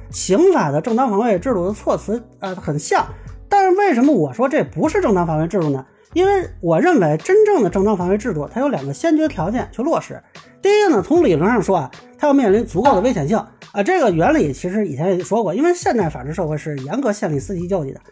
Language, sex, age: Chinese, male, 30-49